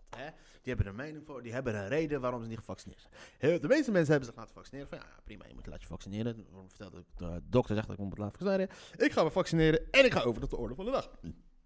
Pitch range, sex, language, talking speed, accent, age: 105-155 Hz, male, Dutch, 270 wpm, Dutch, 30-49